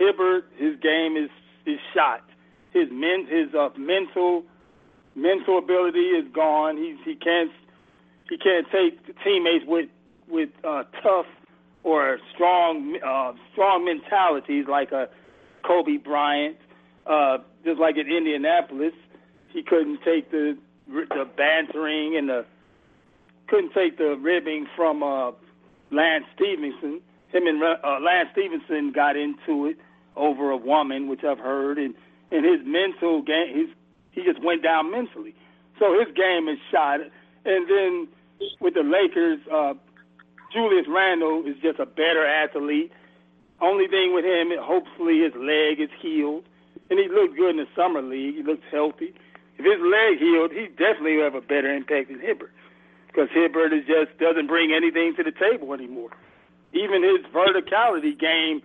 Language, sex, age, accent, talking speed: English, male, 40-59, American, 150 wpm